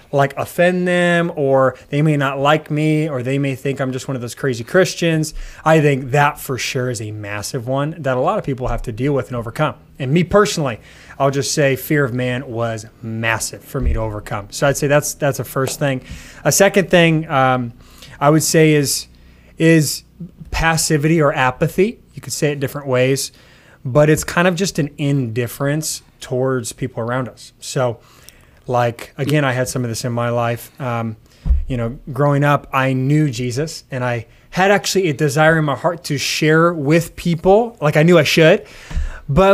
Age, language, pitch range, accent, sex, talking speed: 20-39, English, 130-165 Hz, American, male, 195 wpm